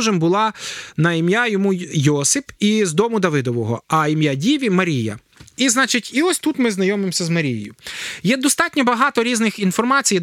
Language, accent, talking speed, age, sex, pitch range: Ukrainian, native, 160 wpm, 20-39, male, 175-225 Hz